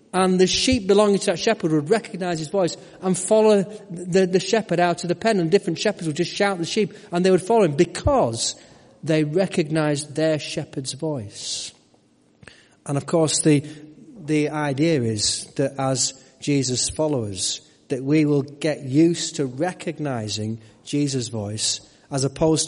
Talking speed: 165 wpm